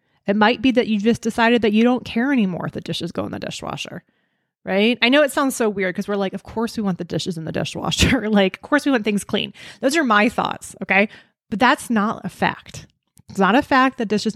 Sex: female